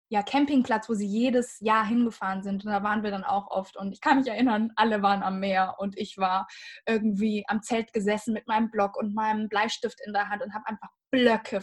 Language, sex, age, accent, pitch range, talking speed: German, female, 10-29, German, 200-240 Hz, 225 wpm